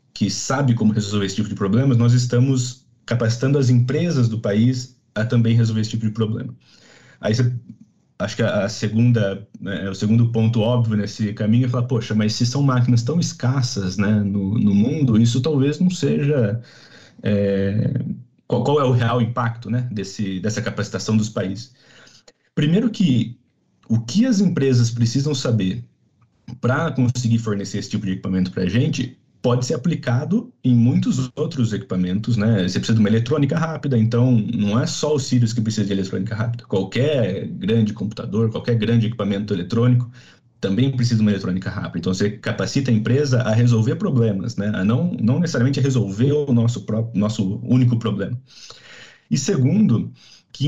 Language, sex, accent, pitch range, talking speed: Portuguese, male, Brazilian, 105-130 Hz, 170 wpm